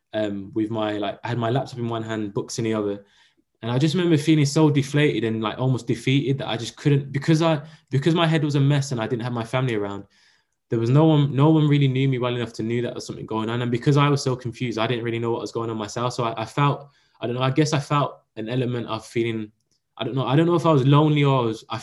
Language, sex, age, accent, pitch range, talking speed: English, male, 10-29, British, 110-135 Hz, 290 wpm